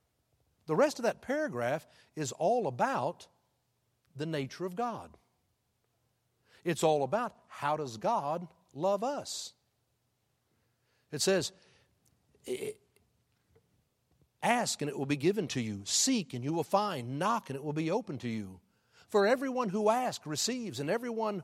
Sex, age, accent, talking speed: male, 60-79, American, 140 wpm